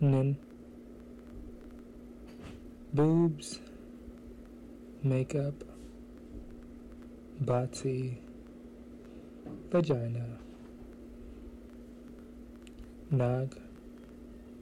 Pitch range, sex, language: 105-135 Hz, male, English